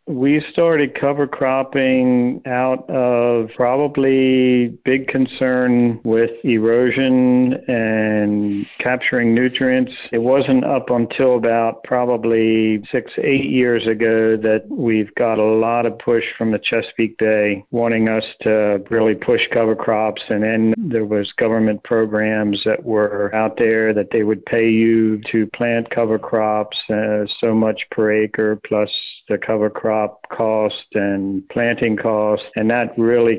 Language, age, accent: English, 50-69, American